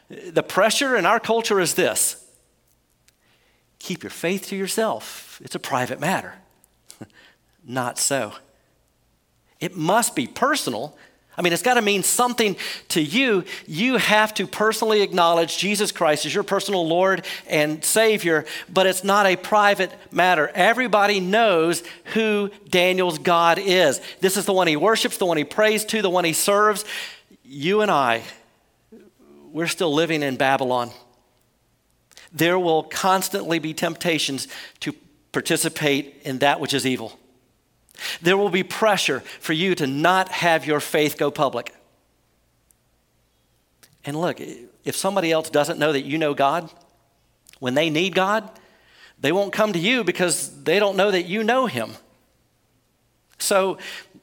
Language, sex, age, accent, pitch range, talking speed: English, male, 50-69, American, 155-200 Hz, 145 wpm